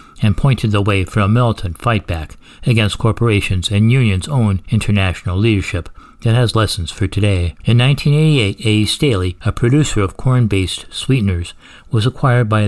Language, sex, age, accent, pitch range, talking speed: English, male, 60-79, American, 95-115 Hz, 155 wpm